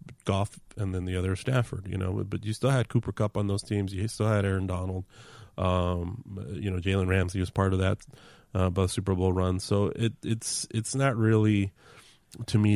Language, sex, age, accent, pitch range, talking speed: English, male, 30-49, American, 95-110 Hz, 205 wpm